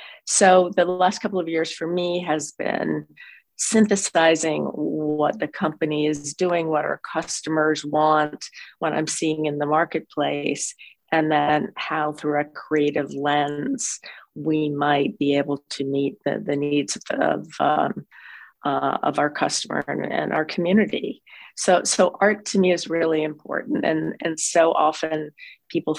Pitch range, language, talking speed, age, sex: 150-165 Hz, English, 150 wpm, 40-59, female